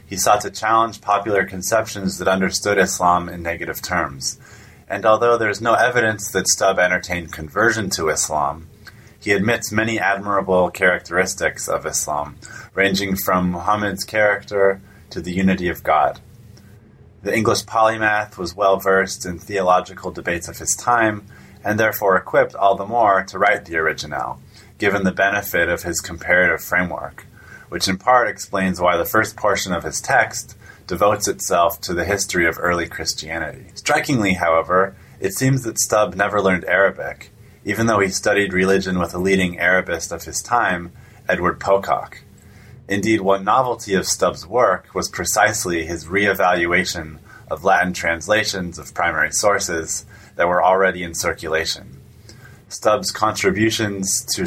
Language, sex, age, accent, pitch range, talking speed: English, male, 30-49, American, 90-105 Hz, 150 wpm